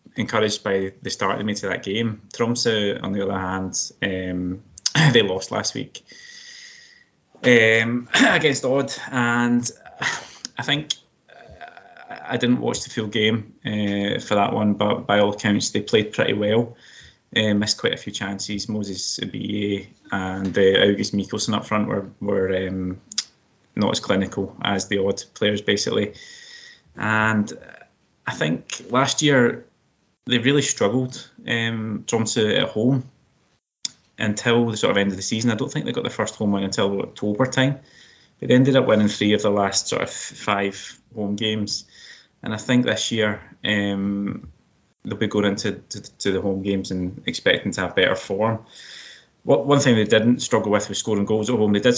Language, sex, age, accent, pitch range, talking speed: English, male, 20-39, British, 100-120 Hz, 175 wpm